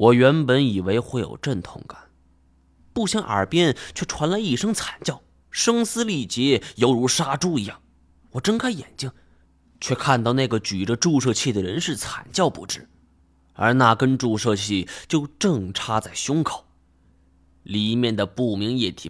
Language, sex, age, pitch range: Chinese, male, 20-39, 85-130 Hz